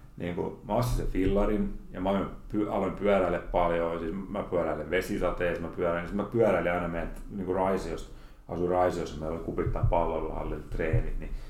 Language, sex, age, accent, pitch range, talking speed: Finnish, male, 30-49, native, 80-100 Hz, 145 wpm